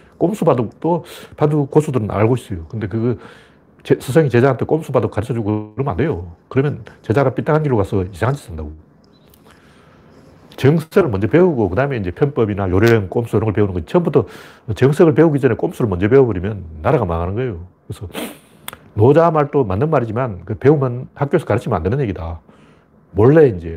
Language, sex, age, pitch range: Korean, male, 40-59, 95-135 Hz